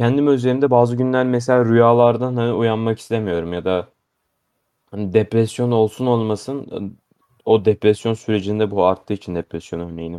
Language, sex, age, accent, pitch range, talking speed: Turkish, male, 30-49, native, 105-125 Hz, 135 wpm